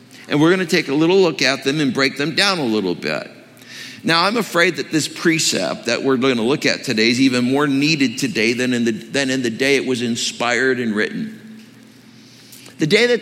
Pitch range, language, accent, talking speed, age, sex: 125-170 Hz, English, American, 220 wpm, 60-79, male